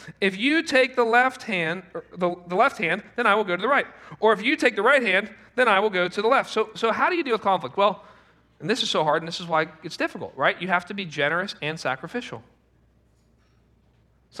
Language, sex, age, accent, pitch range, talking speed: English, male, 40-59, American, 175-255 Hz, 250 wpm